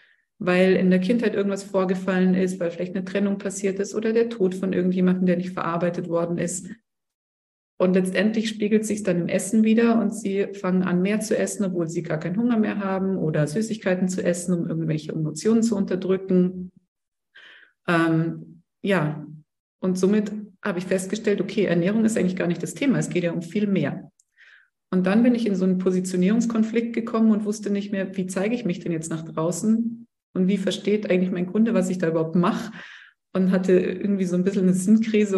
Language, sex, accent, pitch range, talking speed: German, female, German, 180-210 Hz, 195 wpm